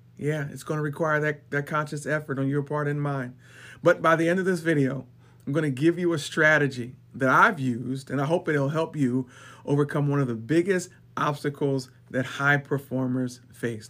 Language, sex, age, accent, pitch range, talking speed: English, male, 40-59, American, 125-155 Hz, 205 wpm